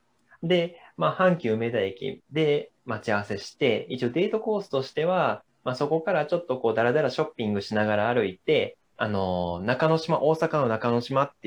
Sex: male